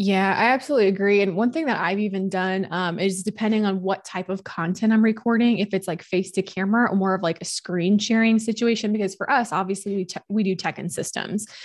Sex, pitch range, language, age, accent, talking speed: female, 175-210 Hz, English, 20-39, American, 230 wpm